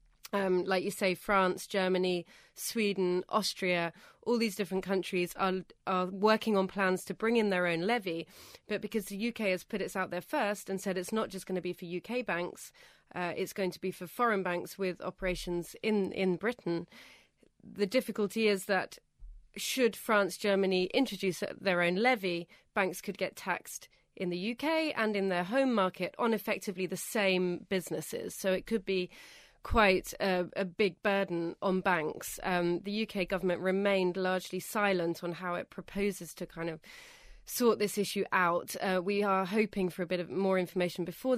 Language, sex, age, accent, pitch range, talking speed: English, female, 30-49, British, 180-205 Hz, 180 wpm